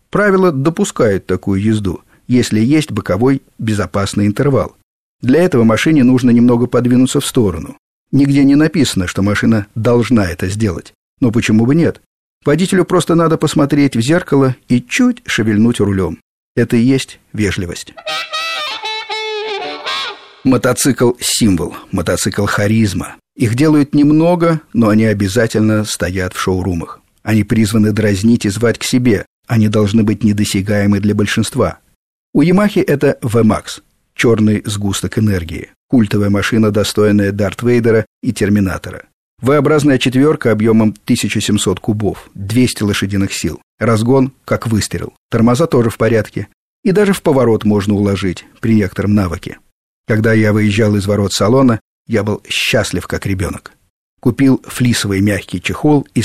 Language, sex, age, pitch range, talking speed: Russian, male, 50-69, 105-130 Hz, 130 wpm